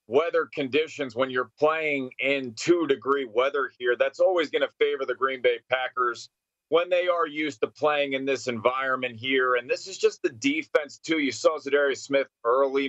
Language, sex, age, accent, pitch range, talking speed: English, male, 30-49, American, 135-185 Hz, 190 wpm